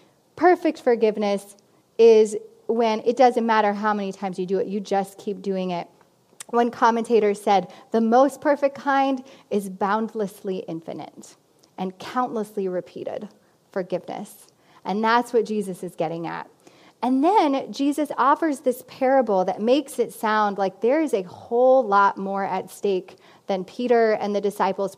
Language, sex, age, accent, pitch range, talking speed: English, female, 20-39, American, 195-255 Hz, 150 wpm